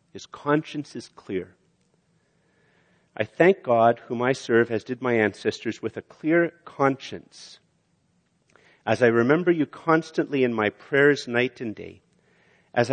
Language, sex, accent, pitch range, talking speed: English, male, American, 110-155 Hz, 140 wpm